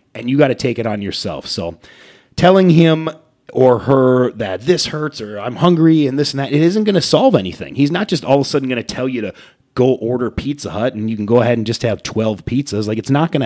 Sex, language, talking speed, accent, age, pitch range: male, English, 265 wpm, American, 30-49, 115-145 Hz